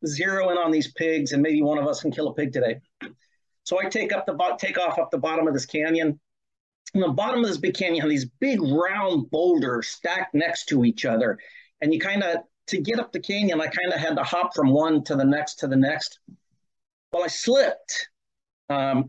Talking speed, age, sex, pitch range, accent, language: 230 wpm, 40-59, male, 150-210 Hz, American, English